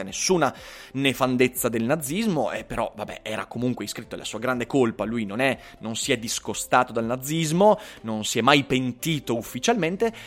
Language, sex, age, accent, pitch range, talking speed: Italian, male, 30-49, native, 125-210 Hz, 175 wpm